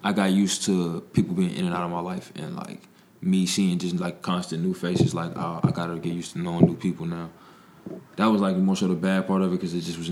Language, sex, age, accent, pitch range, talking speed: English, male, 20-39, American, 90-105 Hz, 280 wpm